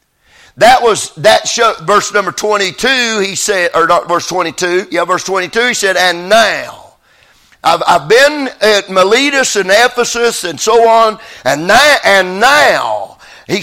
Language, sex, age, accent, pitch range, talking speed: English, male, 50-69, American, 185-245 Hz, 155 wpm